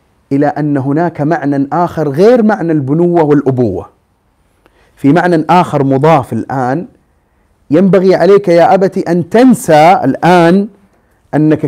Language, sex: Arabic, male